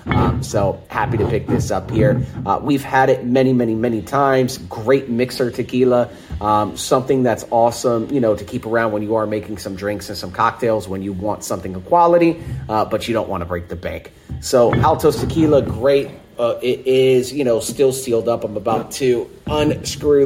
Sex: male